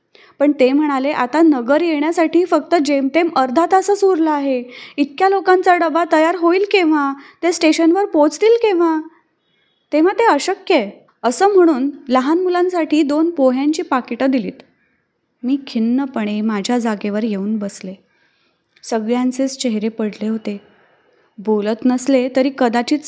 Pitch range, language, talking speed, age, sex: 240-315 Hz, Marathi, 125 wpm, 20-39, female